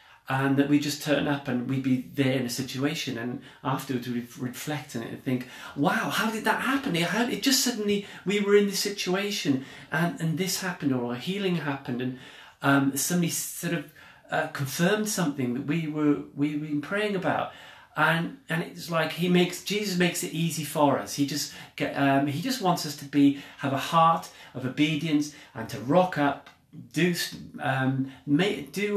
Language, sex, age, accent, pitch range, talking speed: English, male, 40-59, British, 135-175 Hz, 195 wpm